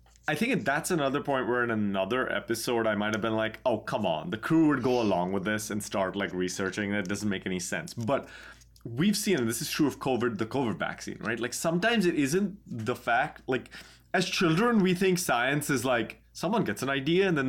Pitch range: 105-150 Hz